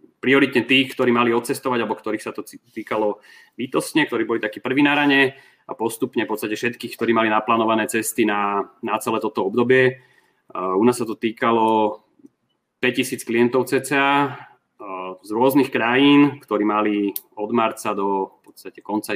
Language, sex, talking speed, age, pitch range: Slovak, male, 155 wpm, 30-49, 110-130 Hz